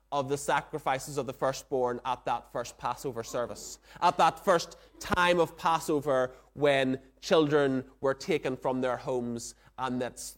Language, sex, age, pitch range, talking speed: English, male, 30-49, 130-175 Hz, 150 wpm